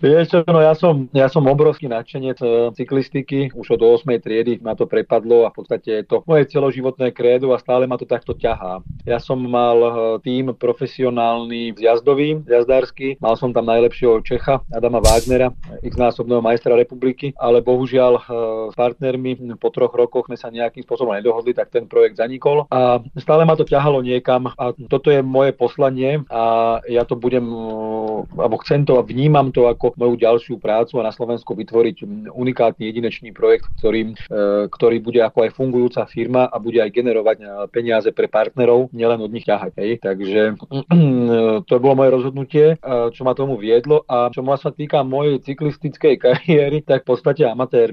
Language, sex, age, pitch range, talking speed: Slovak, male, 40-59, 115-135 Hz, 170 wpm